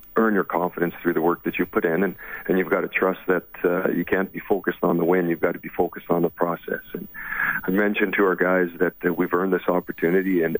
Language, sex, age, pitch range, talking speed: English, male, 40-59, 85-90 Hz, 260 wpm